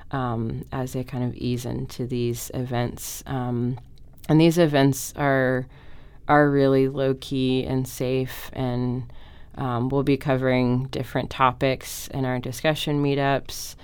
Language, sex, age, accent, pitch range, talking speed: English, female, 30-49, American, 125-135 Hz, 130 wpm